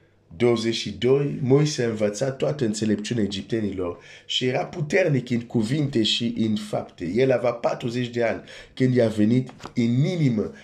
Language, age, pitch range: Romanian, 50-69, 105-125 Hz